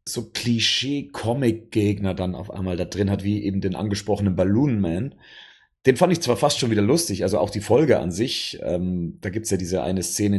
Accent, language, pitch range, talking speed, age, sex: German, German, 95-115 Hz, 195 wpm, 40-59, male